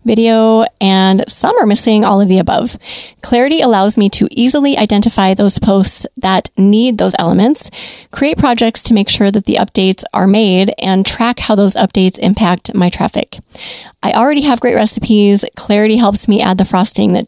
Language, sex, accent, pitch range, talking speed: English, female, American, 195-235 Hz, 175 wpm